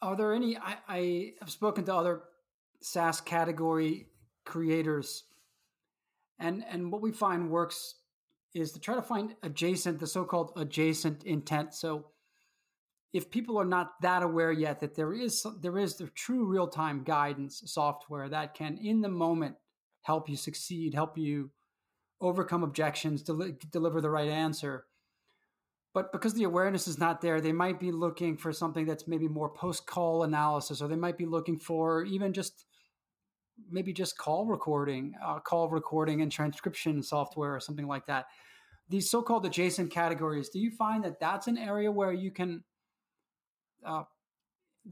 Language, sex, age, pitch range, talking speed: English, male, 30-49, 155-185 Hz, 160 wpm